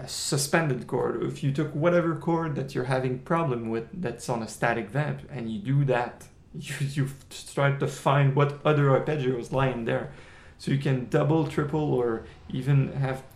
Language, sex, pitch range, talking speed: English, male, 125-155 Hz, 180 wpm